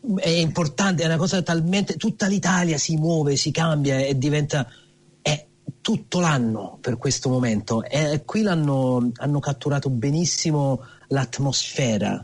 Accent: native